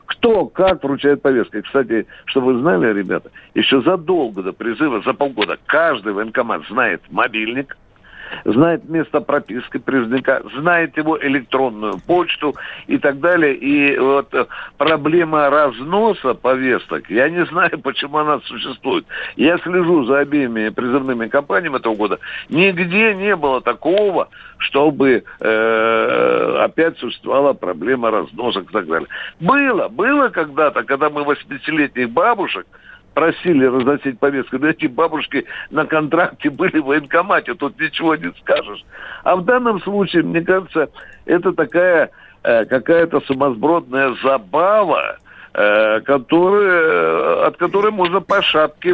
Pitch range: 130-180 Hz